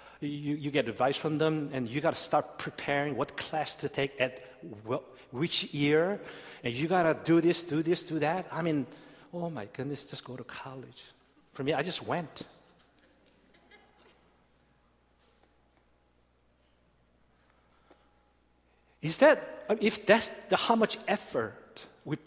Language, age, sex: Korean, 50-69, male